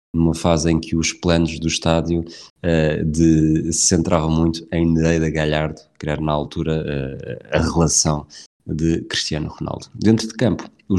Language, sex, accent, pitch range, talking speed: Portuguese, male, Portuguese, 80-105 Hz, 165 wpm